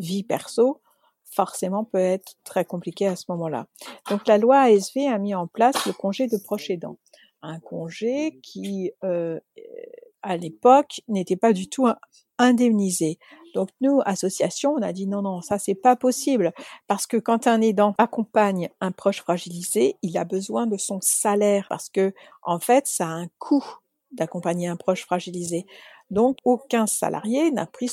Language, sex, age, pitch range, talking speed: French, female, 60-79, 190-260 Hz, 170 wpm